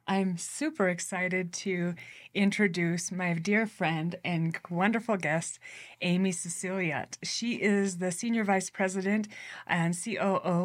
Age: 30-49